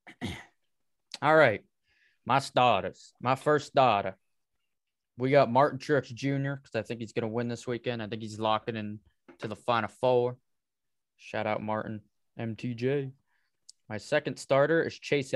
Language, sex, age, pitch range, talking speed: English, male, 20-39, 115-140 Hz, 150 wpm